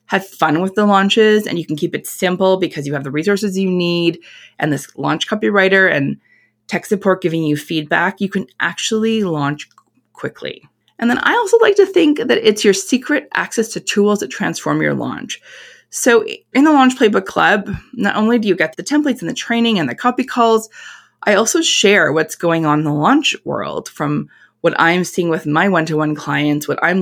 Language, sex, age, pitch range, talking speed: English, female, 20-39, 155-210 Hz, 200 wpm